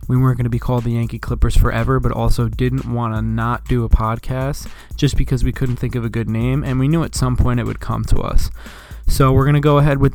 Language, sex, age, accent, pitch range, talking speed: English, male, 20-39, American, 110-130 Hz, 270 wpm